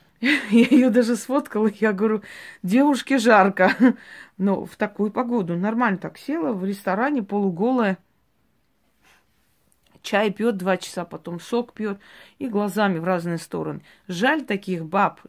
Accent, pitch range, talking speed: native, 190-240 Hz, 130 wpm